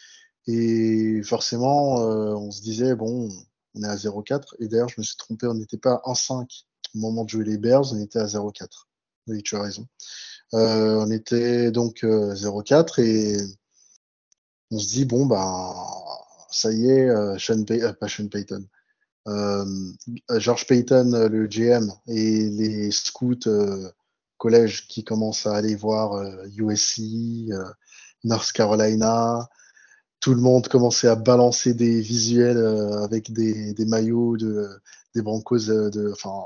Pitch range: 110-130 Hz